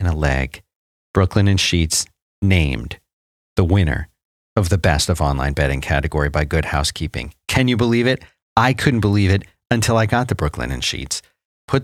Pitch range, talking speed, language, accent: 80-115 Hz, 175 wpm, English, American